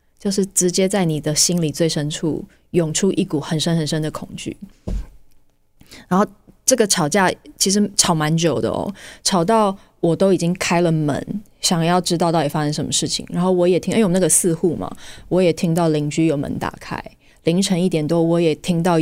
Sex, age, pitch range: female, 20-39, 150-180 Hz